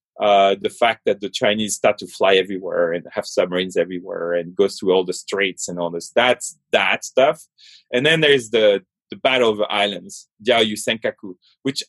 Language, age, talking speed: English, 30-49, 185 wpm